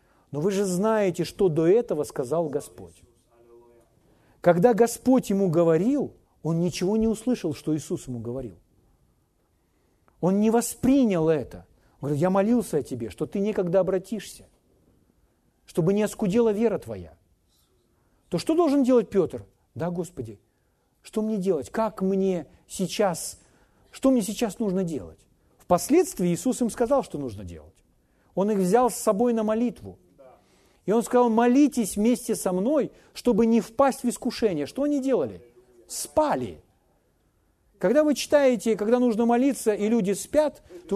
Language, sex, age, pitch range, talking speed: Russian, male, 40-59, 155-240 Hz, 145 wpm